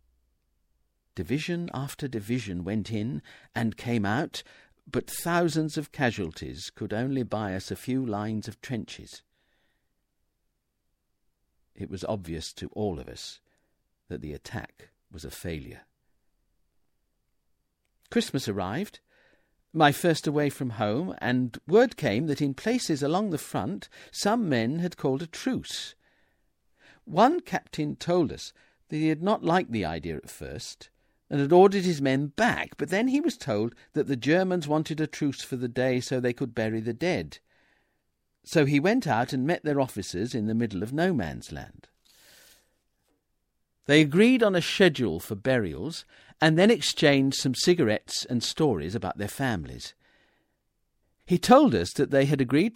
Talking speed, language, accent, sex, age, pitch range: 150 wpm, English, British, male, 50-69, 110-165 Hz